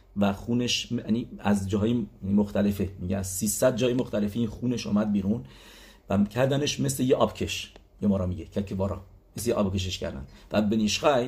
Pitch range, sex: 105-125 Hz, male